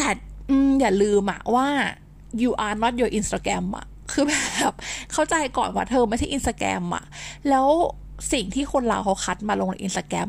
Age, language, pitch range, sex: 20-39, Thai, 195-265 Hz, female